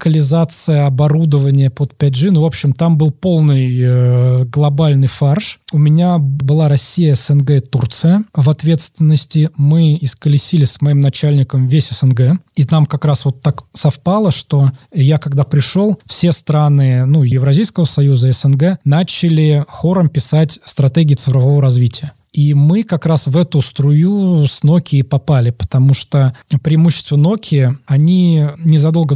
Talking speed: 140 wpm